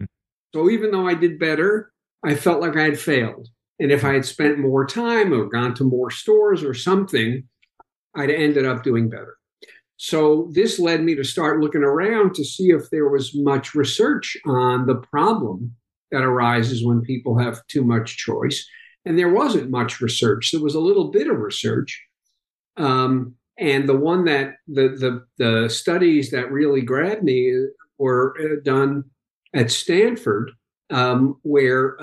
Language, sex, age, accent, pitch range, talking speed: English, male, 50-69, American, 130-155 Hz, 165 wpm